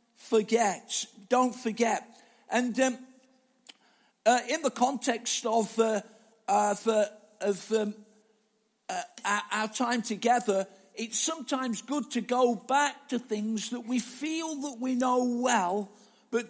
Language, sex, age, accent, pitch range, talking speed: English, male, 50-69, British, 210-245 Hz, 130 wpm